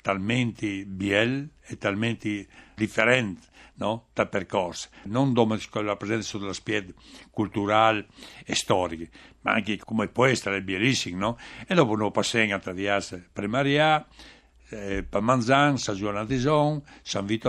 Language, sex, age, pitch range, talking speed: Italian, male, 60-79, 100-135 Hz, 140 wpm